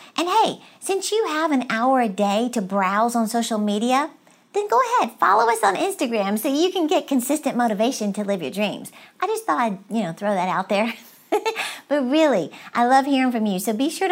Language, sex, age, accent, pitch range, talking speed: English, female, 50-69, American, 225-290 Hz, 210 wpm